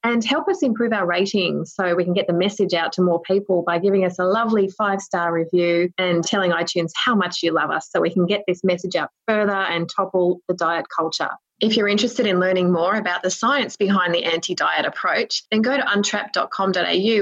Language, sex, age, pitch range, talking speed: English, female, 20-39, 175-205 Hz, 215 wpm